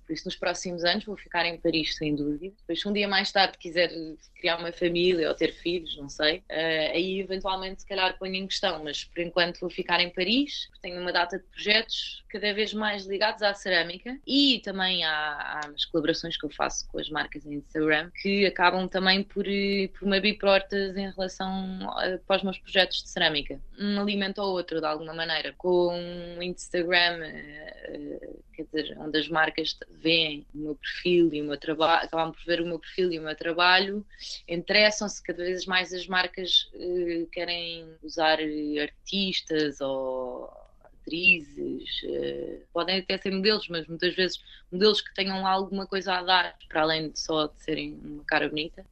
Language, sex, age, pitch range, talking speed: Portuguese, female, 20-39, 165-200 Hz, 185 wpm